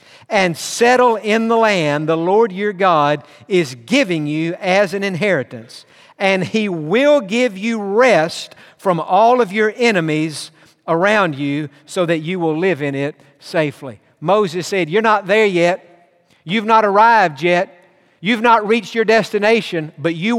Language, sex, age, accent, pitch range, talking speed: English, male, 50-69, American, 165-215 Hz, 155 wpm